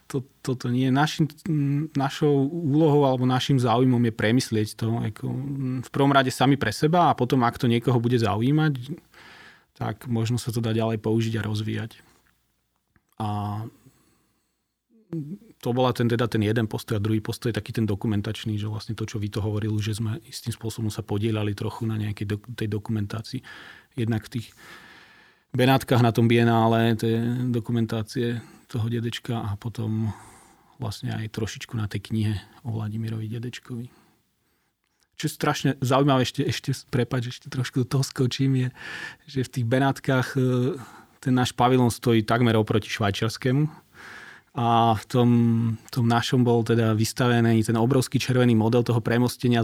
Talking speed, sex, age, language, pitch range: 155 wpm, male, 30-49, Slovak, 110-130 Hz